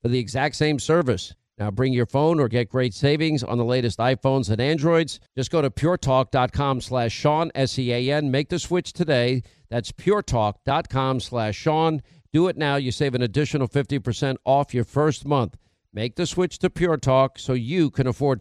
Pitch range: 120-150 Hz